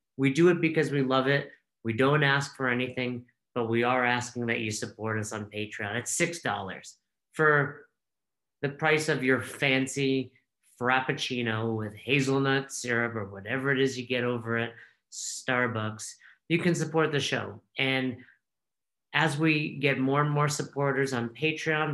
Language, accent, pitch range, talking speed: English, American, 120-145 Hz, 160 wpm